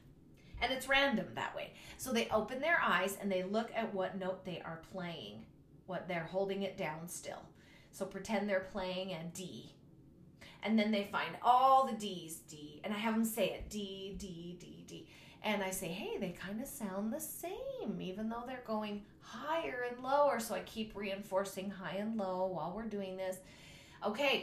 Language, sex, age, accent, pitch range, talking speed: English, female, 30-49, American, 190-245 Hz, 190 wpm